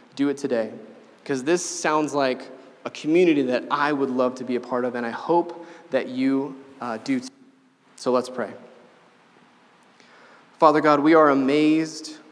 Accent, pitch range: American, 130-160 Hz